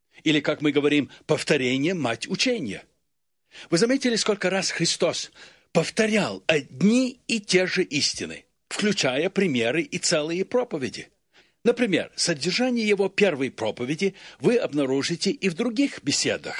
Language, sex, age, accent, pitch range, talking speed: Russian, male, 60-79, native, 135-215 Hz, 125 wpm